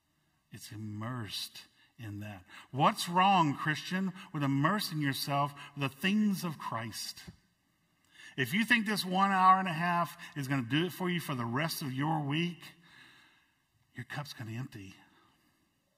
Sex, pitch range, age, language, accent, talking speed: male, 110-145 Hz, 50-69, English, American, 160 wpm